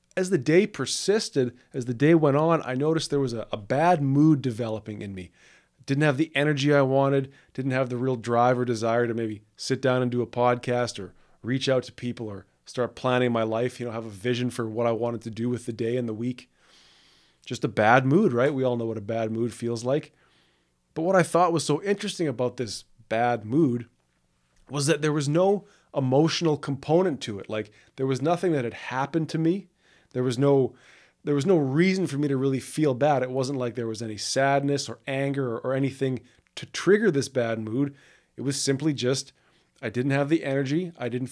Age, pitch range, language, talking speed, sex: 20-39, 120-145 Hz, English, 220 wpm, male